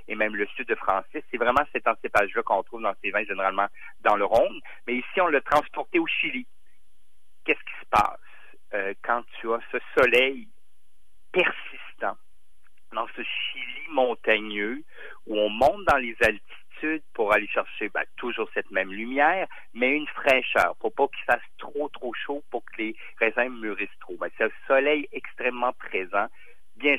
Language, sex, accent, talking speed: French, male, French, 175 wpm